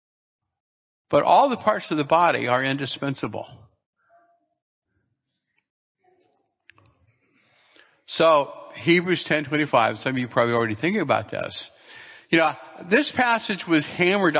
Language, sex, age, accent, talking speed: English, male, 50-69, American, 115 wpm